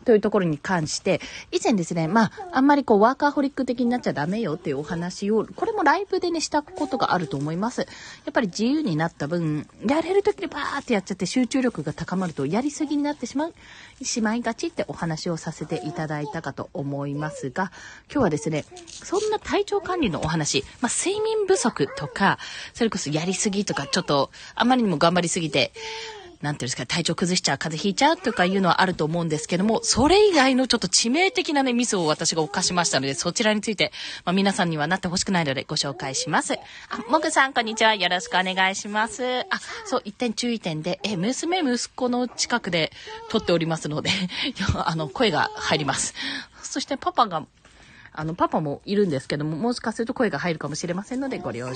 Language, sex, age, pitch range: Japanese, female, 20-39, 165-265 Hz